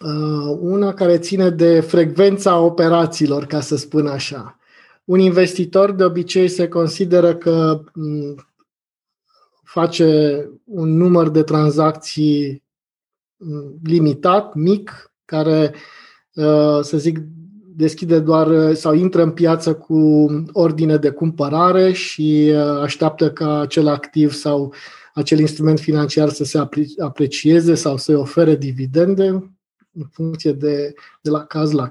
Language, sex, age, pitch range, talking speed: Romanian, male, 20-39, 150-175 Hz, 115 wpm